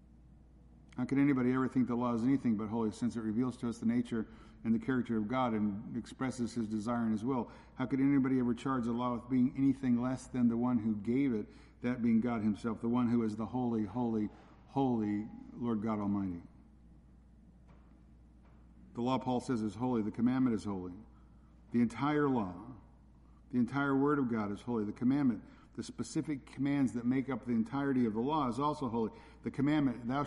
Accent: American